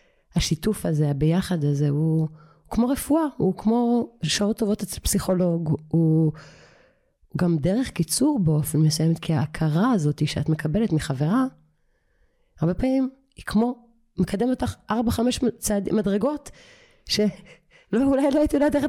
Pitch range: 150-200 Hz